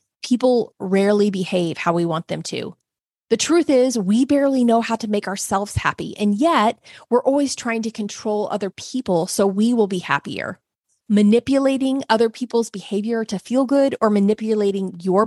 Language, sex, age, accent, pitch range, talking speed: English, female, 30-49, American, 190-235 Hz, 170 wpm